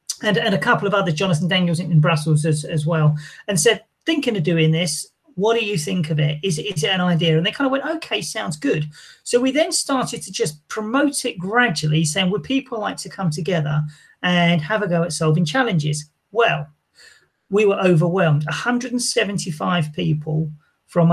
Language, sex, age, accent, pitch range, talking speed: English, male, 40-59, British, 155-220 Hz, 195 wpm